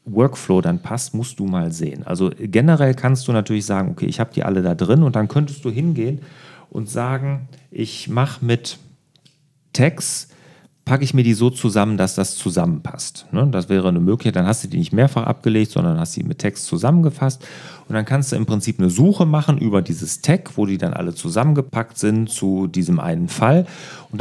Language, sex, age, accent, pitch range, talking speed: German, male, 40-59, German, 105-150 Hz, 200 wpm